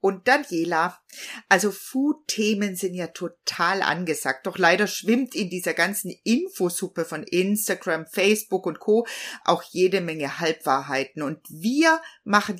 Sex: female